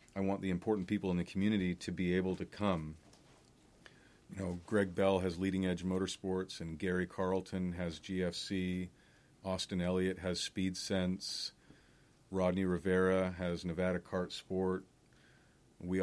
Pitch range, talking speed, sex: 85-95 Hz, 140 wpm, male